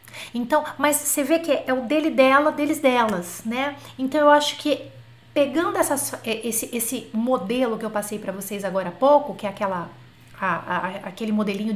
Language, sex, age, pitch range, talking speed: French, female, 30-49, 215-285 Hz, 185 wpm